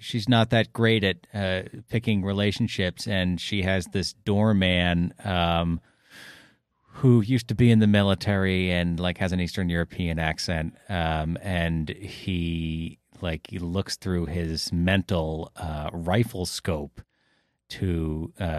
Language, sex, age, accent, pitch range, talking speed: English, male, 30-49, American, 85-115 Hz, 135 wpm